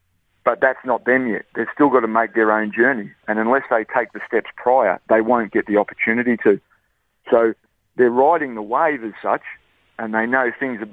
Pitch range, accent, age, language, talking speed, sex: 105-115 Hz, Australian, 40-59, English, 210 wpm, male